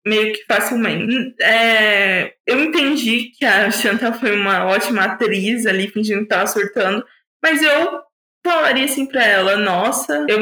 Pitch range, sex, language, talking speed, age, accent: 215-260 Hz, female, Portuguese, 150 wpm, 20-39, Brazilian